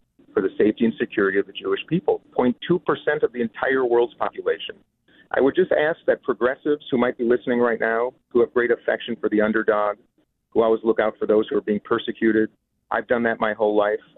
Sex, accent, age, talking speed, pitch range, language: male, American, 50-69, 210 wpm, 105-135 Hz, English